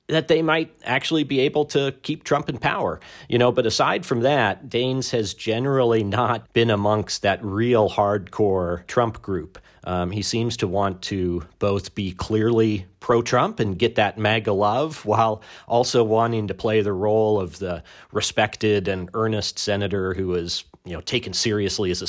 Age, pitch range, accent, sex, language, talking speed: 40-59, 95-120 Hz, American, male, English, 175 wpm